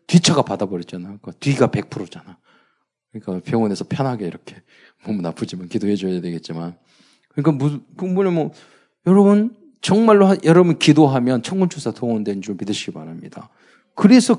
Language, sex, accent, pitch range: Korean, male, native, 115-190 Hz